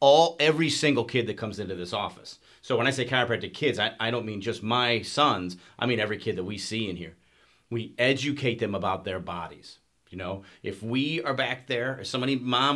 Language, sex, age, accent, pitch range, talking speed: English, male, 40-59, American, 105-130 Hz, 220 wpm